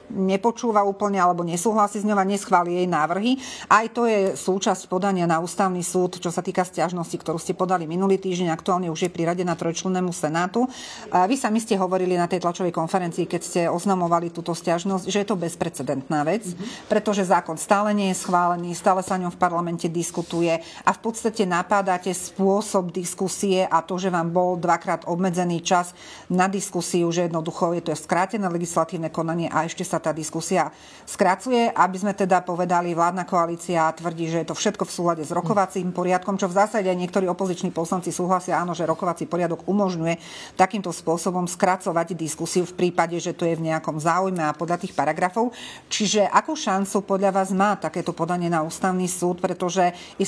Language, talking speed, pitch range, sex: Slovak, 185 wpm, 170-195 Hz, female